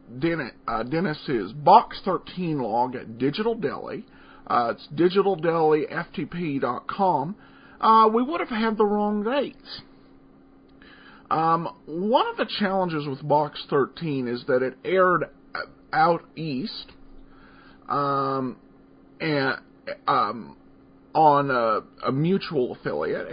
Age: 40-59